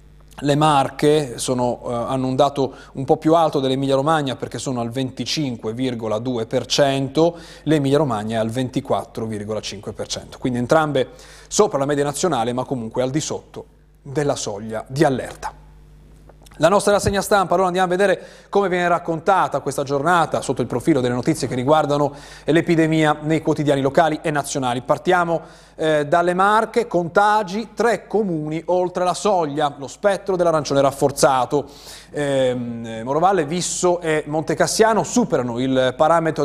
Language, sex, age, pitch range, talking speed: Italian, male, 30-49, 130-175 Hz, 135 wpm